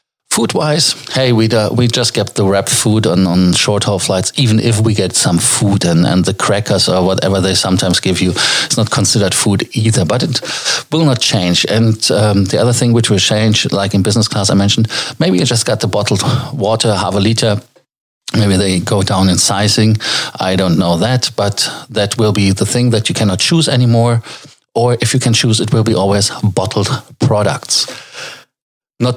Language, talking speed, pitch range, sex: German, 200 wpm, 100-120 Hz, male